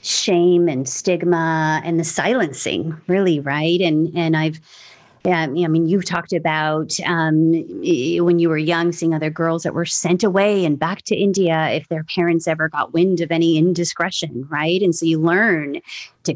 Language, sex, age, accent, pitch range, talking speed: English, female, 30-49, American, 160-185 Hz, 175 wpm